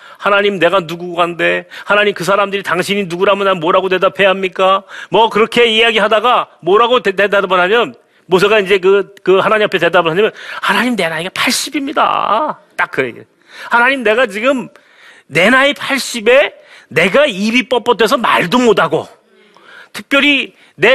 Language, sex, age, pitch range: Korean, male, 40-59, 200-265 Hz